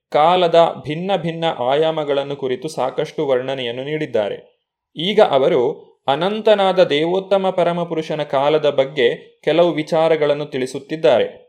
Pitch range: 145-180 Hz